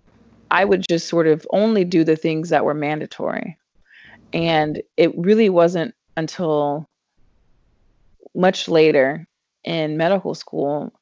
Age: 20-39